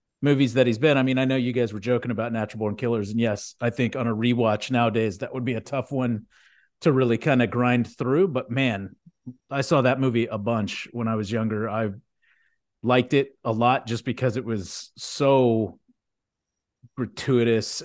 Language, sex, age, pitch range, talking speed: English, male, 40-59, 115-135 Hz, 200 wpm